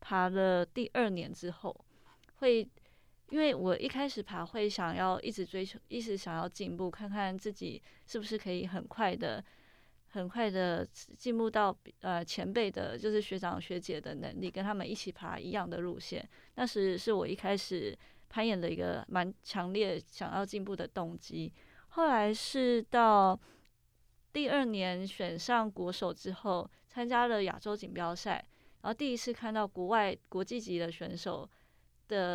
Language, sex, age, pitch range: Chinese, female, 20-39, 180-220 Hz